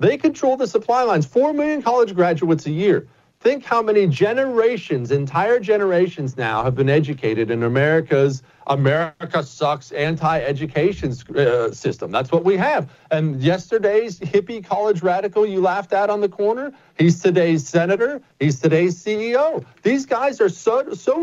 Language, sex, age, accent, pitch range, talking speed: English, male, 40-59, American, 160-235 Hz, 150 wpm